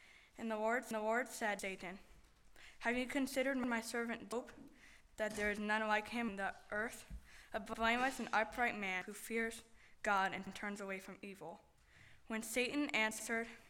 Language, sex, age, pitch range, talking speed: English, female, 10-29, 205-235 Hz, 175 wpm